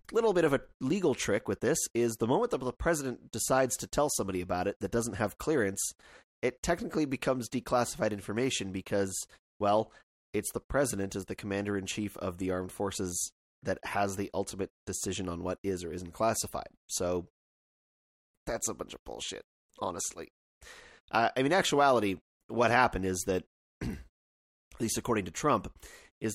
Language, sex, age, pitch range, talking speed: English, male, 30-49, 95-120 Hz, 175 wpm